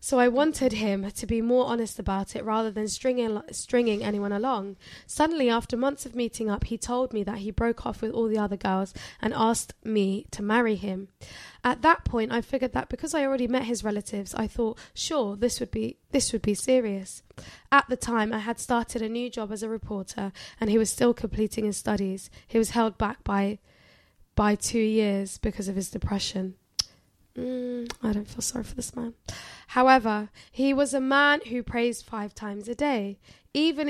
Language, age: English, 10-29